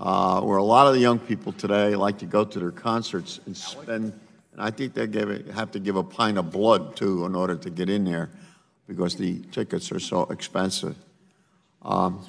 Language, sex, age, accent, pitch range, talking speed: English, male, 50-69, American, 110-150 Hz, 205 wpm